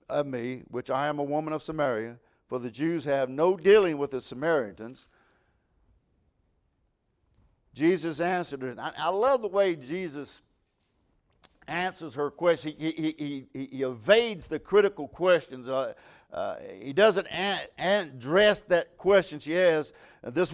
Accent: American